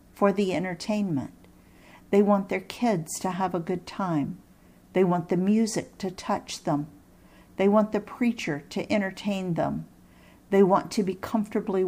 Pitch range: 170-210 Hz